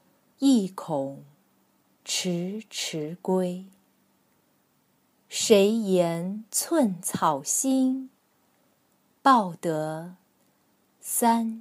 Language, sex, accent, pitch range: Chinese, female, native, 180-240 Hz